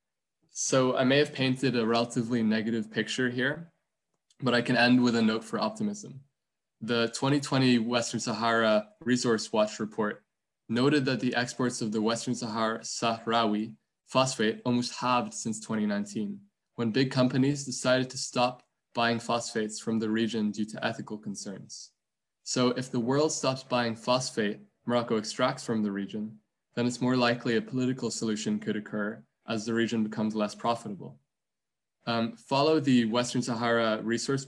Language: English